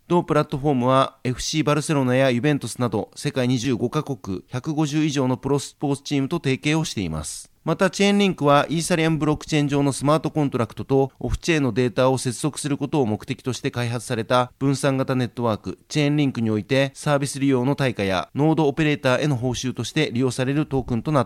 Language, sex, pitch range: Japanese, male, 125-150 Hz